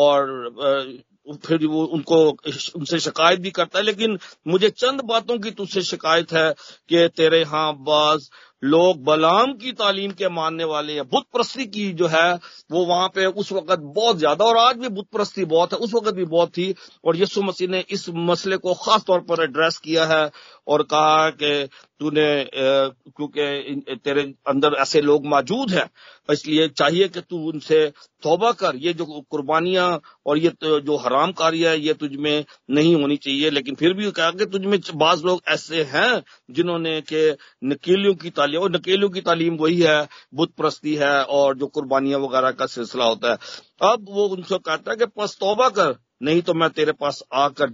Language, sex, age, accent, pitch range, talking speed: Hindi, male, 50-69, native, 150-185 Hz, 180 wpm